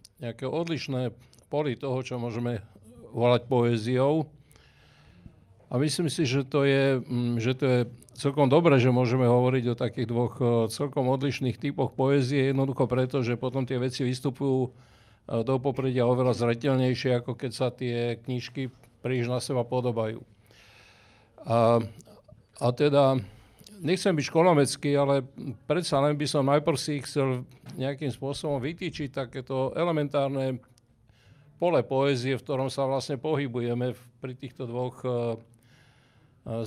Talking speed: 130 wpm